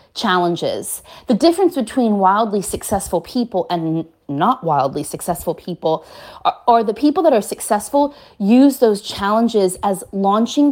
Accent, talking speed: American, 135 wpm